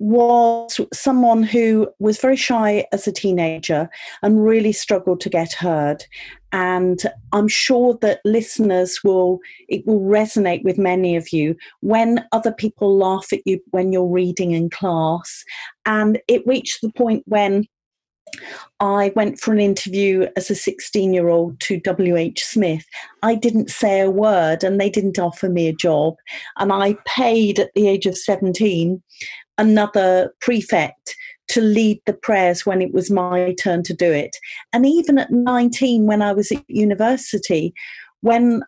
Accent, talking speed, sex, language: British, 160 wpm, female, English